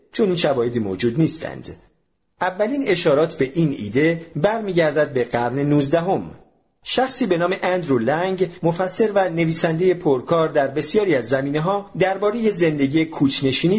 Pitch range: 120-165 Hz